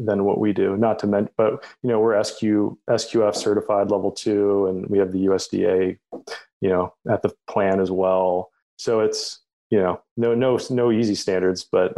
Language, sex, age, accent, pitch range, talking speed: English, male, 20-39, American, 95-115 Hz, 190 wpm